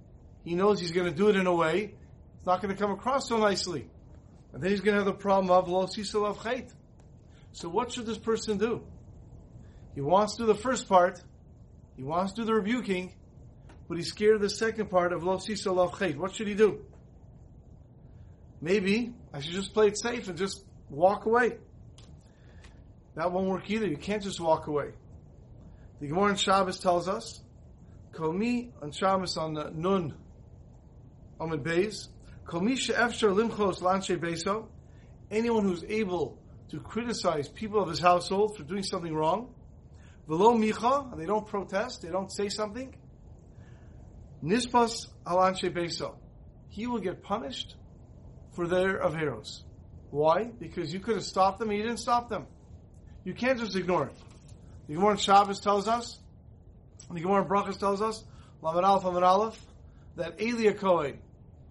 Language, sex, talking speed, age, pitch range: English, male, 145 wpm, 40-59, 145-210 Hz